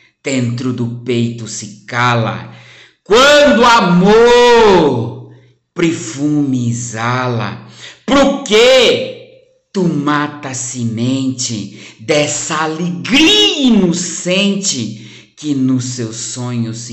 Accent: Brazilian